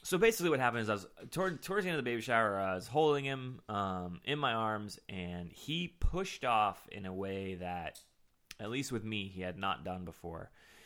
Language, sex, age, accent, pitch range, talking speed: English, male, 20-39, American, 90-115 Hz, 215 wpm